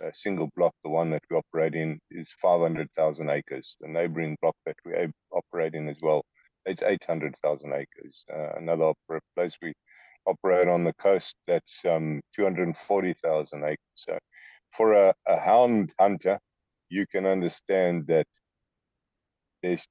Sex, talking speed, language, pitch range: male, 145 wpm, English, 75-90 Hz